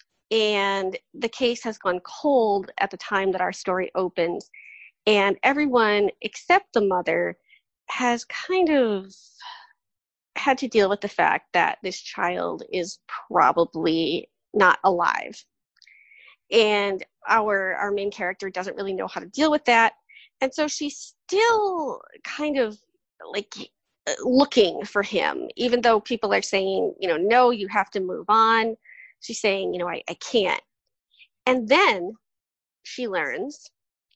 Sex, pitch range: female, 195-270 Hz